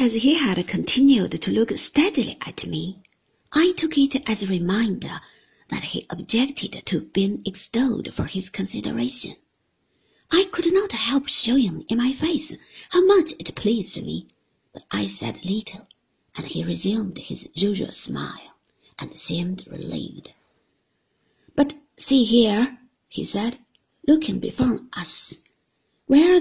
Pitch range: 195-285 Hz